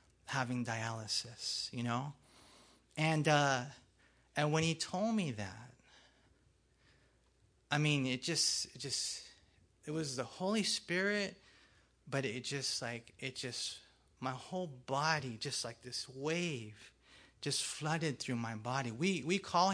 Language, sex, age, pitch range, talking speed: English, male, 30-49, 125-170 Hz, 130 wpm